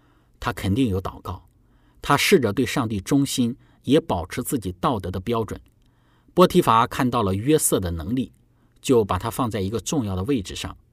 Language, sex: Chinese, male